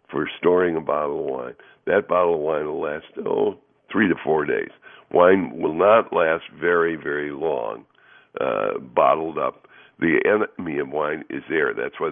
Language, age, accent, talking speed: English, 60-79, American, 175 wpm